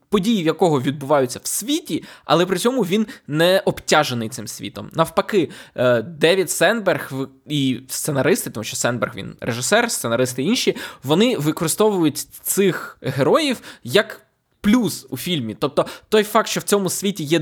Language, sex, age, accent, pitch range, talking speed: Ukrainian, male, 20-39, native, 135-195 Hz, 140 wpm